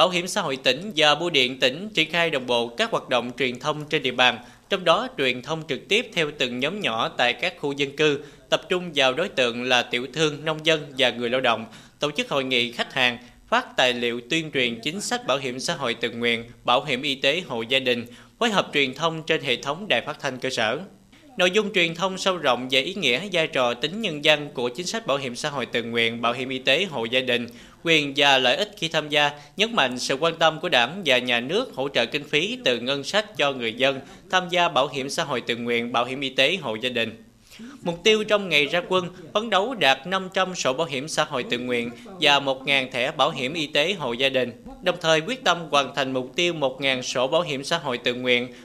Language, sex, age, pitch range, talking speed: Vietnamese, male, 20-39, 125-170 Hz, 250 wpm